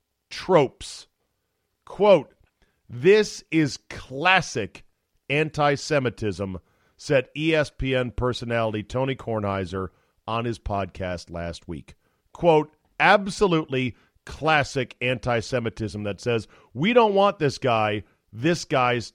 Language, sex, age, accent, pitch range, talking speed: English, male, 50-69, American, 100-135 Hz, 90 wpm